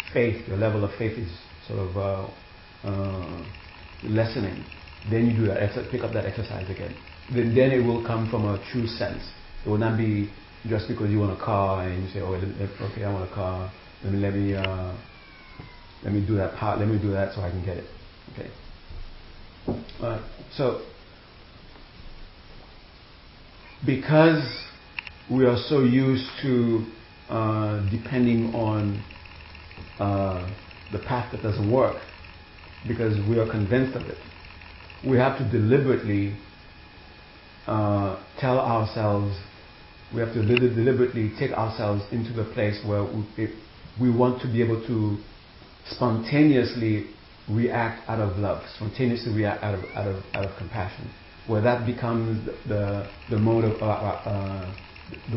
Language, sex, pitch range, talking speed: English, male, 95-115 Hz, 150 wpm